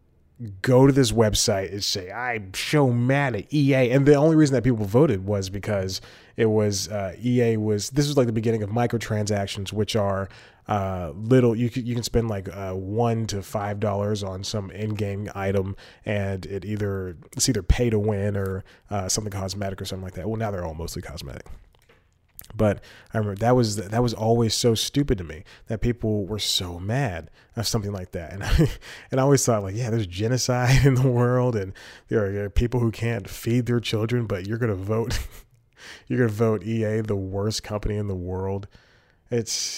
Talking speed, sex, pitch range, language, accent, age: 200 wpm, male, 100-120 Hz, English, American, 20-39